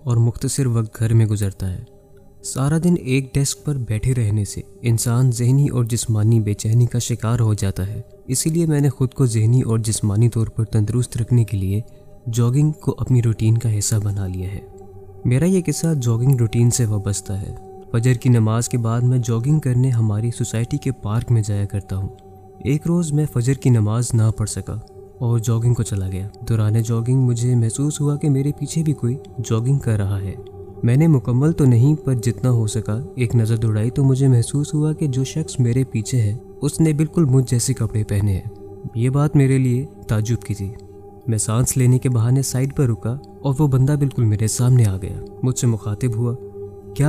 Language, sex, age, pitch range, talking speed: Urdu, male, 20-39, 105-130 Hz, 205 wpm